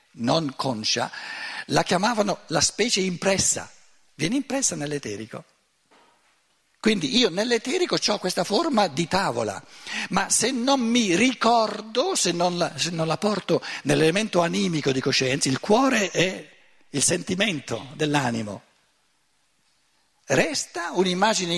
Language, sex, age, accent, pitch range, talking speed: Italian, male, 60-79, native, 145-230 Hz, 110 wpm